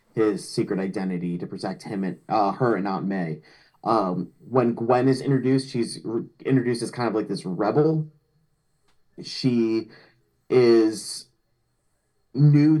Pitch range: 100-135 Hz